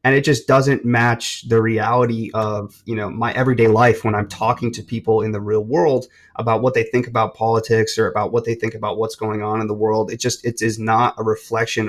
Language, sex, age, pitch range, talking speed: English, male, 30-49, 110-125 Hz, 235 wpm